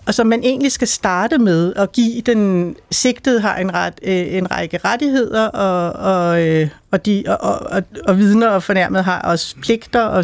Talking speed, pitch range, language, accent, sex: 190 wpm, 185-225 Hz, Danish, native, female